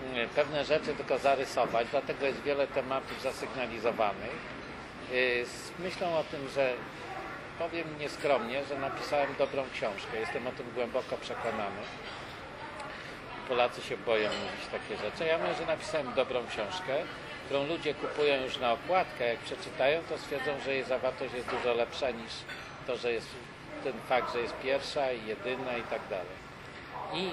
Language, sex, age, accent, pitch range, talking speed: English, male, 50-69, Polish, 125-150 Hz, 145 wpm